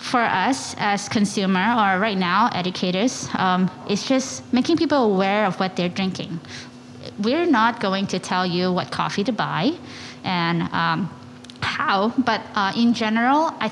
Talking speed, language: 160 wpm, English